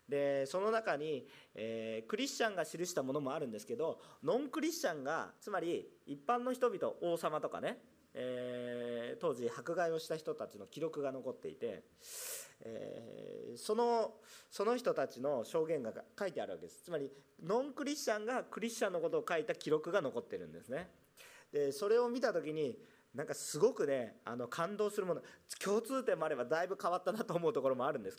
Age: 40-59